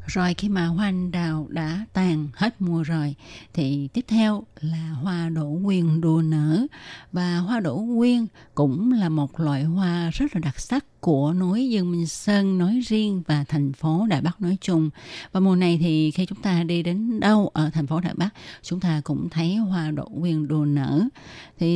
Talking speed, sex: 200 wpm, female